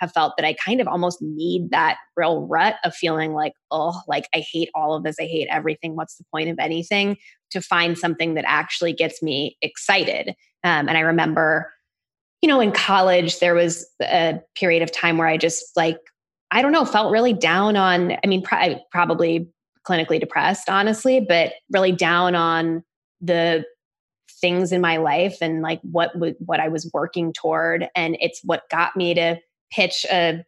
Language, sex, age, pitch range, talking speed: English, female, 20-39, 160-185 Hz, 185 wpm